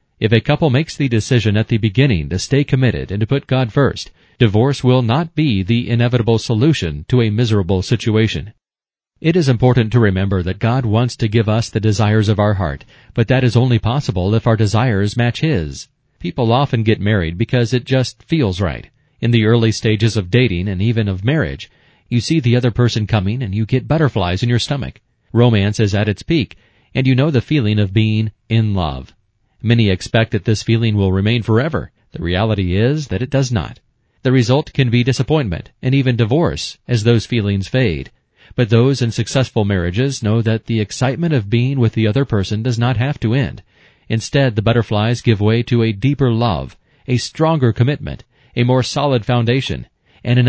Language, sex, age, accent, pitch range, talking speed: English, male, 40-59, American, 110-130 Hz, 195 wpm